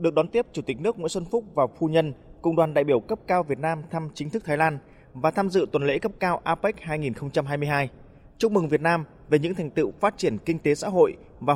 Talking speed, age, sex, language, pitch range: 255 wpm, 20-39, male, Vietnamese, 145-185 Hz